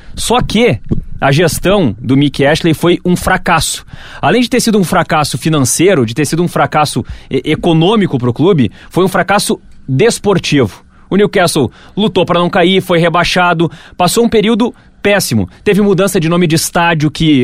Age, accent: 30-49, Brazilian